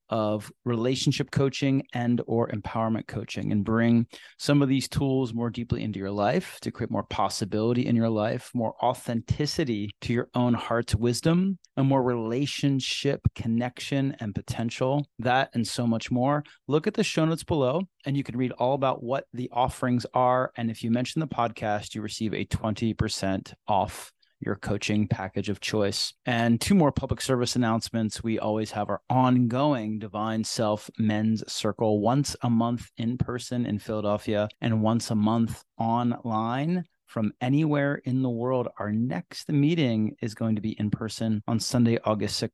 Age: 30-49